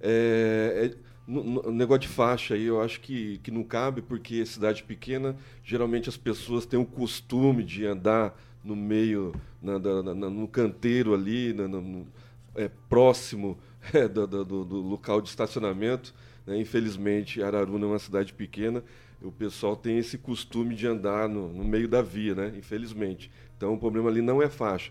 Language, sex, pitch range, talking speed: Portuguese, male, 105-120 Hz, 170 wpm